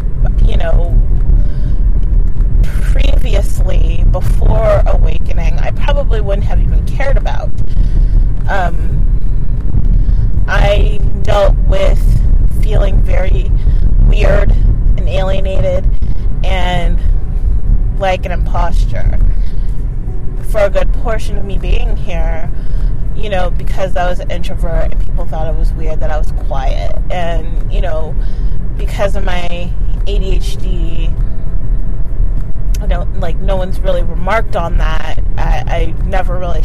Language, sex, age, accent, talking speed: English, female, 30-49, American, 115 wpm